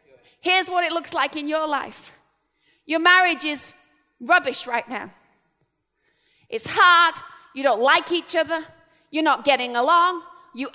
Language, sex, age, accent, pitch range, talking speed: English, female, 30-49, British, 310-375 Hz, 145 wpm